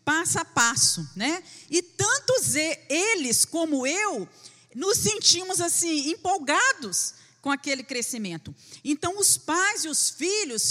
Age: 40-59